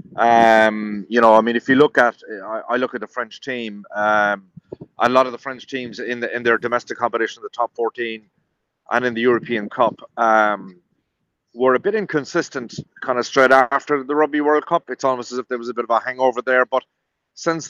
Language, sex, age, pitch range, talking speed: English, male, 30-49, 115-135 Hz, 215 wpm